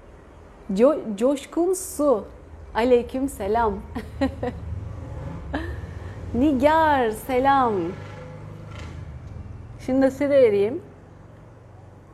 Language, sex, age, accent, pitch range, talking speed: Turkish, female, 30-49, native, 220-280 Hz, 55 wpm